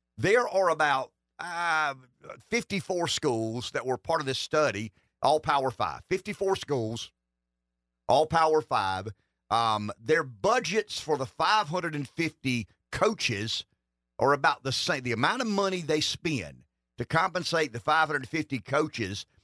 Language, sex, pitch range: English, male, 100-155 Hz